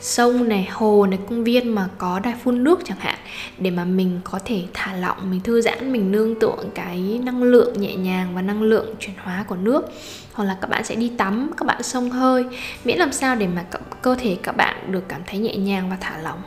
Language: Vietnamese